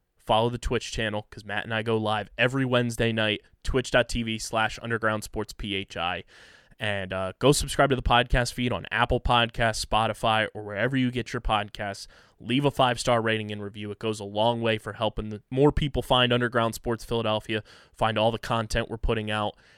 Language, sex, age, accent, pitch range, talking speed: English, male, 20-39, American, 110-125 Hz, 180 wpm